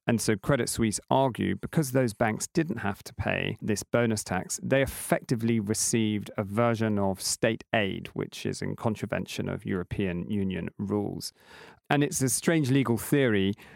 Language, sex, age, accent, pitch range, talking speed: English, male, 40-59, British, 100-120 Hz, 160 wpm